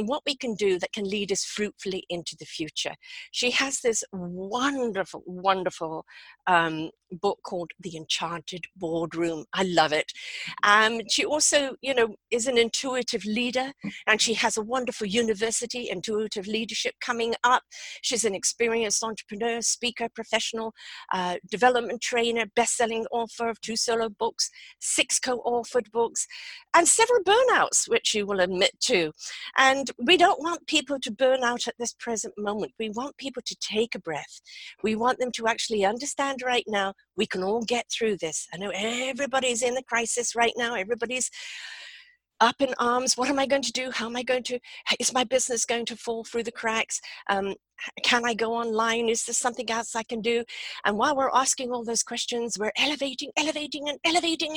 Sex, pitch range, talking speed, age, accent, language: female, 210-260 Hz, 175 wpm, 50-69, British, English